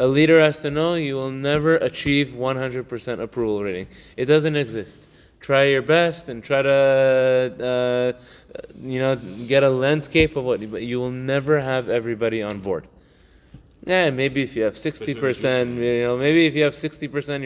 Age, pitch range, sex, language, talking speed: 20-39, 135-175 Hz, male, English, 175 wpm